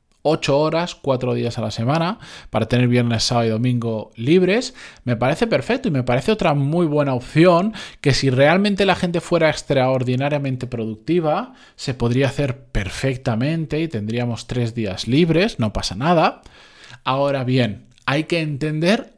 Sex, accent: male, Spanish